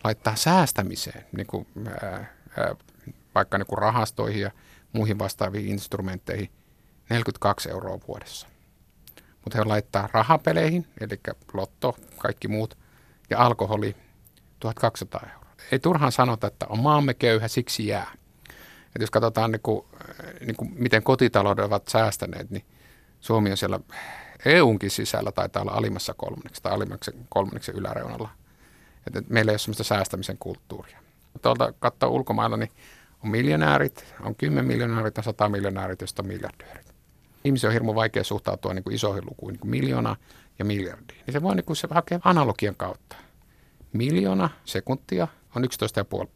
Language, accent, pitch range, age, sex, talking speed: Finnish, native, 100-125 Hz, 50-69, male, 135 wpm